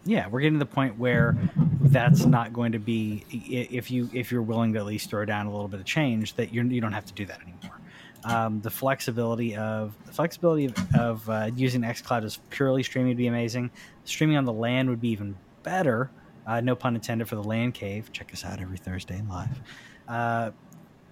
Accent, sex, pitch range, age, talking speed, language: American, male, 110-130 Hz, 20-39, 220 wpm, English